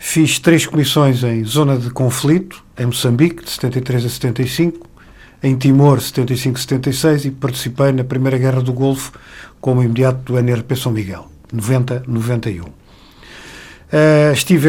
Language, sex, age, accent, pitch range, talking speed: English, male, 50-69, Portuguese, 125-155 Hz, 140 wpm